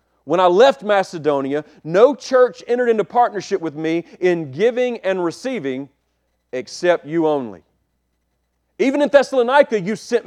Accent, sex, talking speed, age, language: American, male, 135 wpm, 40-59, English